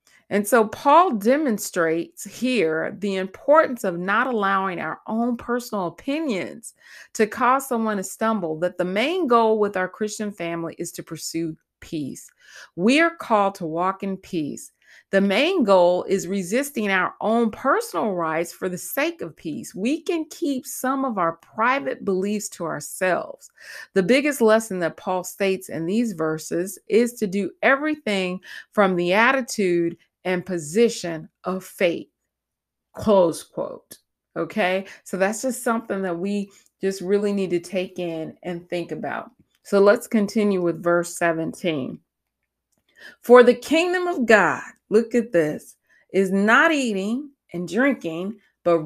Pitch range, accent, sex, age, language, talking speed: 180-255 Hz, American, female, 30-49, English, 145 wpm